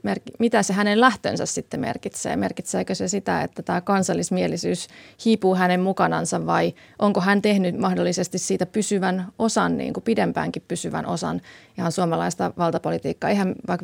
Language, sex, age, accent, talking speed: Finnish, female, 30-49, native, 145 wpm